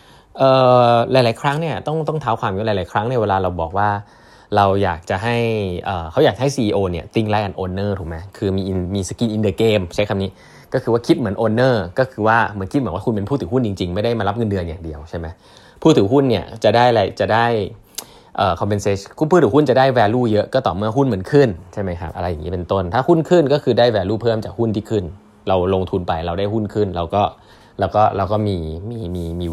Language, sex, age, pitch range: Thai, male, 20-39, 95-130 Hz